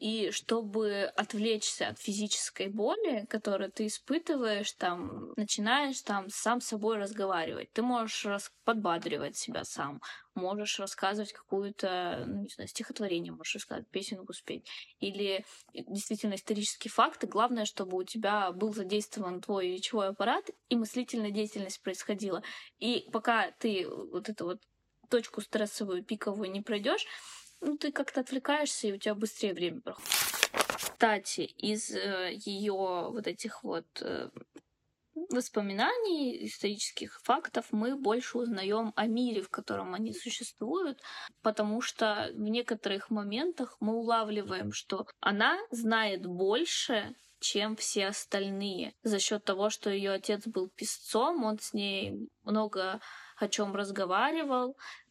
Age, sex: 20-39, female